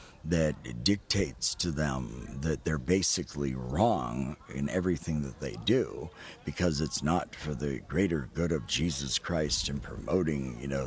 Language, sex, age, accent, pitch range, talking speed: English, male, 50-69, American, 75-95 Hz, 150 wpm